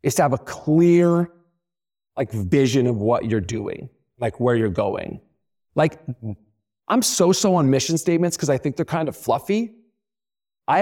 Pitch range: 115-165 Hz